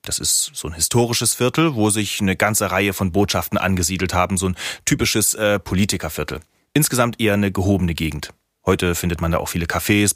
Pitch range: 90-110 Hz